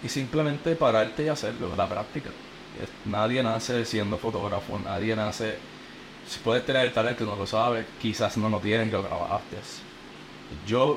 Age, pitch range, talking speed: 30-49, 95-115 Hz, 165 wpm